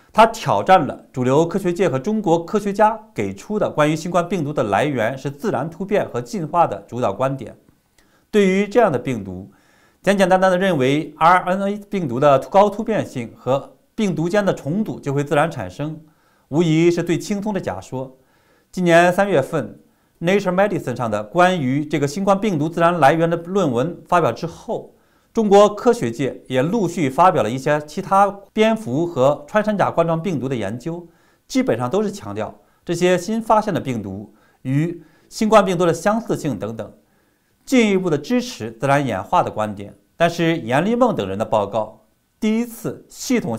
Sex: male